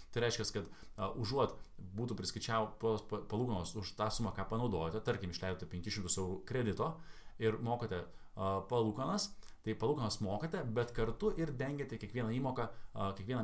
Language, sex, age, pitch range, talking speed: English, male, 20-39, 105-140 Hz, 155 wpm